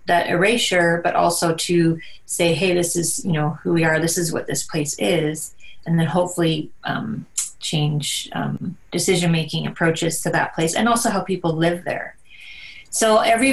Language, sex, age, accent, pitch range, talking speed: English, female, 30-49, American, 165-190 Hz, 175 wpm